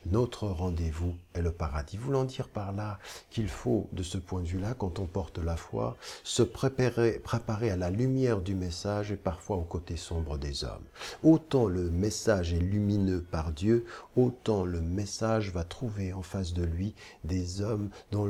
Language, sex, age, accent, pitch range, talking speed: French, male, 50-69, French, 90-110 Hz, 180 wpm